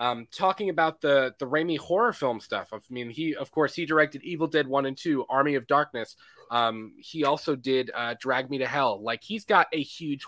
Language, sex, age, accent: English, male, 20-39, American